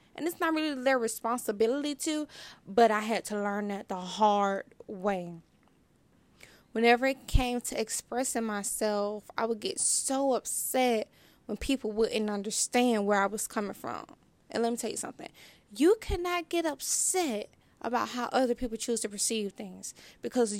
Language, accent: English, American